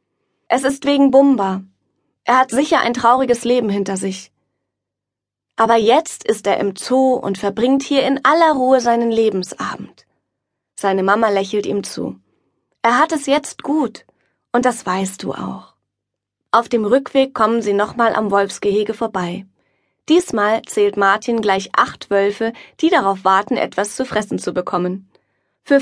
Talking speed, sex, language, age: 150 wpm, female, German, 20-39